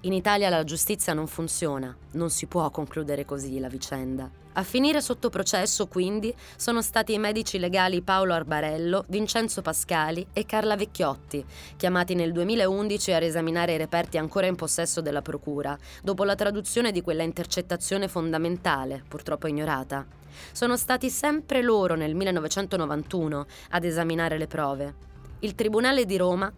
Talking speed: 145 wpm